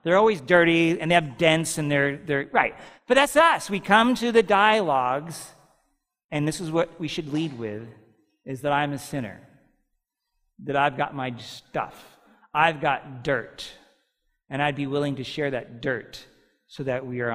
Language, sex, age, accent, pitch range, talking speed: English, male, 40-59, American, 120-180 Hz, 180 wpm